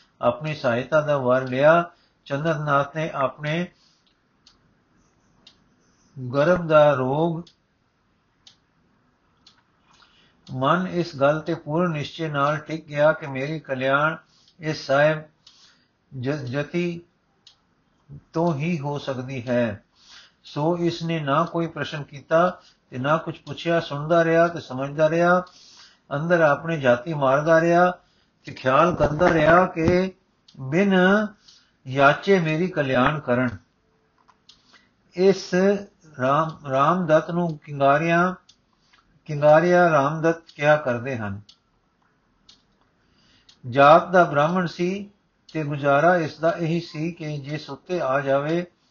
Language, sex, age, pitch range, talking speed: Punjabi, male, 50-69, 140-170 Hz, 110 wpm